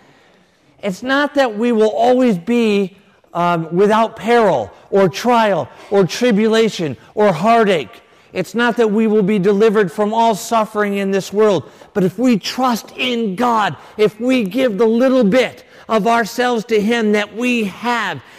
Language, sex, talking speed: English, male, 155 wpm